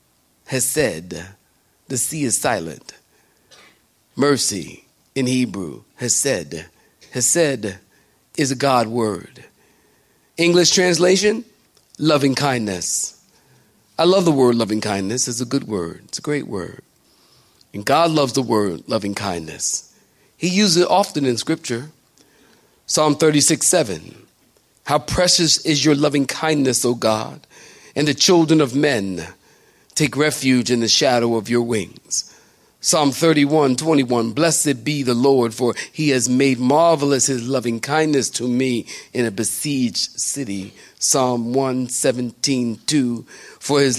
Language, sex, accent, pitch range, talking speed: English, male, American, 115-145 Hz, 135 wpm